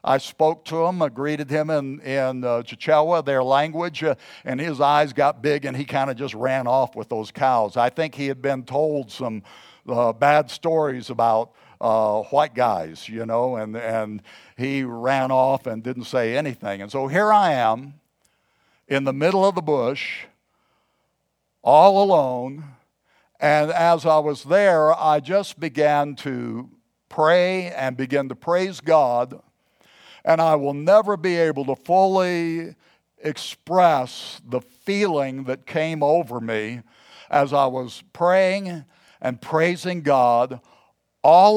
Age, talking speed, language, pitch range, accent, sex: 60-79, 150 wpm, English, 130-160 Hz, American, male